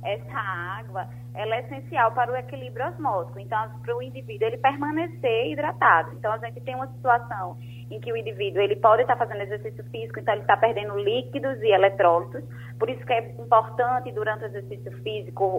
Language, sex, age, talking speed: Portuguese, female, 20-39, 185 wpm